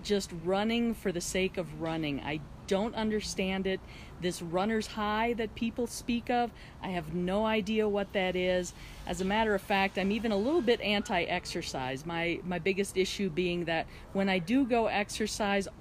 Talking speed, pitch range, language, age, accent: 180 wpm, 180-225 Hz, English, 40-59, American